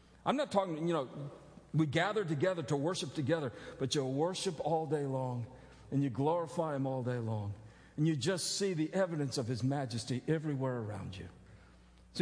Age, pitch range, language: 50-69, 125-180 Hz, English